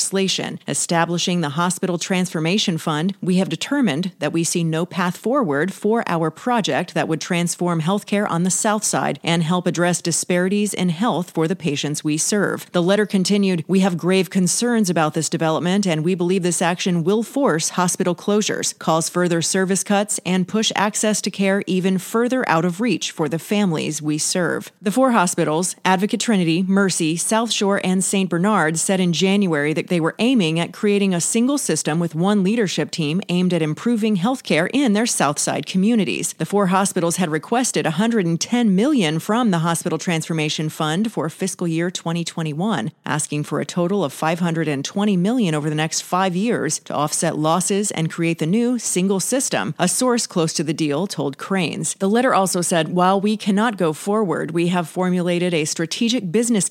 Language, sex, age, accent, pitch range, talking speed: English, female, 40-59, American, 165-205 Hz, 180 wpm